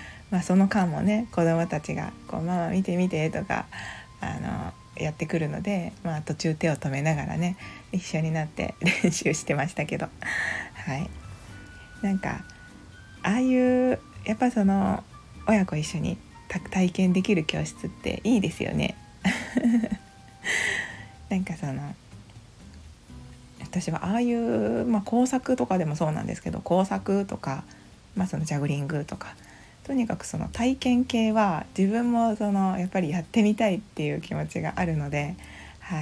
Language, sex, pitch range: Japanese, female, 145-200 Hz